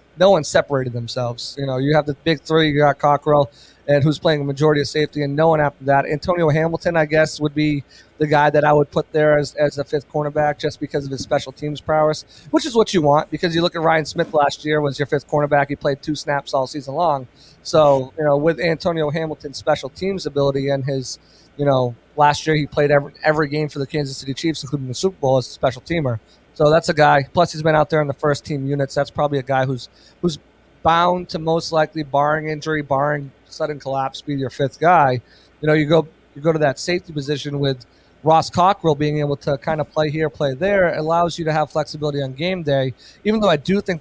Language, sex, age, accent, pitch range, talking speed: English, male, 30-49, American, 140-155 Hz, 240 wpm